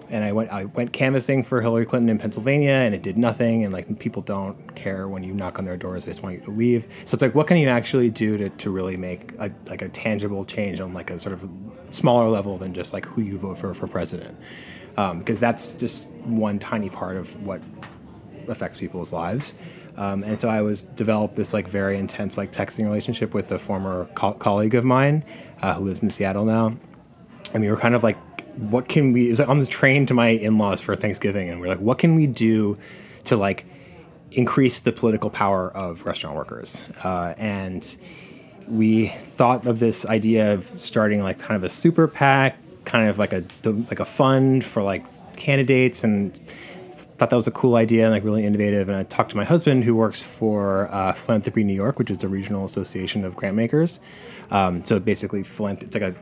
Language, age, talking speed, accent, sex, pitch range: English, 20-39, 215 wpm, American, male, 100-120 Hz